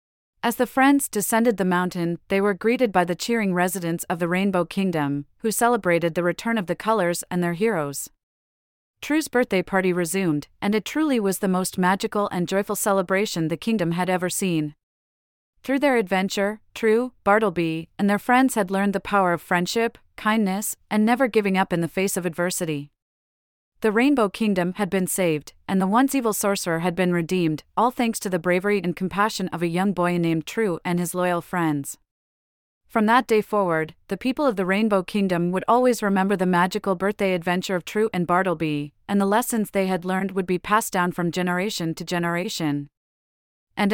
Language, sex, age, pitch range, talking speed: English, female, 30-49, 175-215 Hz, 185 wpm